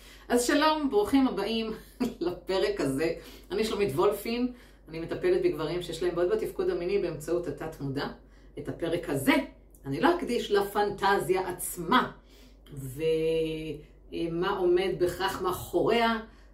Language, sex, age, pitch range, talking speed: Hebrew, female, 30-49, 165-240 Hz, 115 wpm